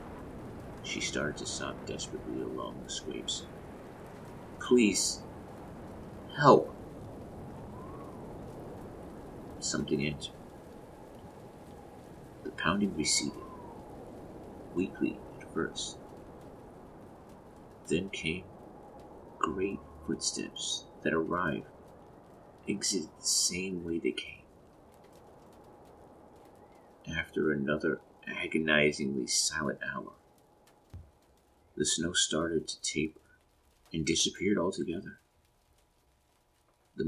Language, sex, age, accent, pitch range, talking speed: English, male, 50-69, American, 70-85 Hz, 70 wpm